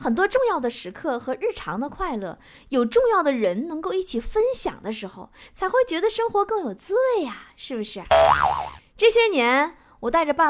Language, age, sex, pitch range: Chinese, 20-39, female, 245-400 Hz